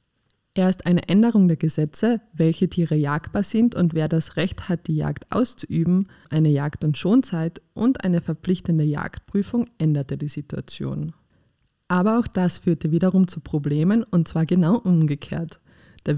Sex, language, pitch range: female, English, 155-190 Hz